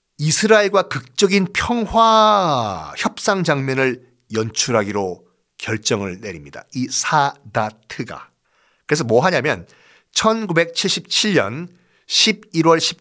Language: Korean